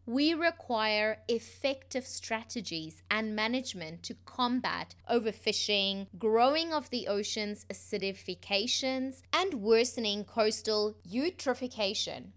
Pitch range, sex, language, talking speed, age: 200-265 Hz, female, English, 85 wpm, 20-39